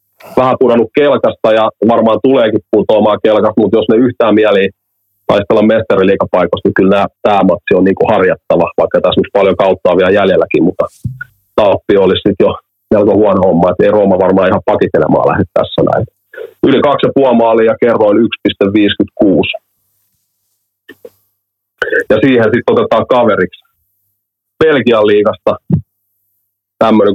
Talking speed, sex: 135 wpm, male